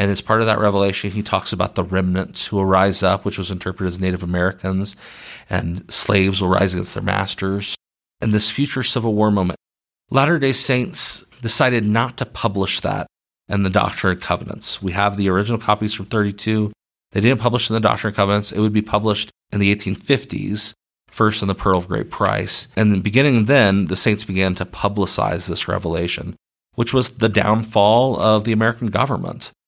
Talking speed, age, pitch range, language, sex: 190 wpm, 40-59, 95-110 Hz, English, male